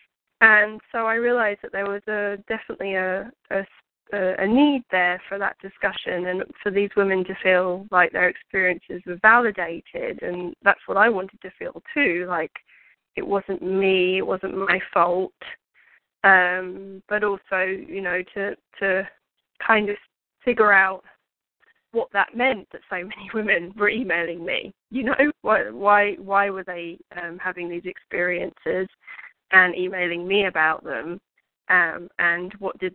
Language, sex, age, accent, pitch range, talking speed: English, female, 10-29, British, 180-205 Hz, 155 wpm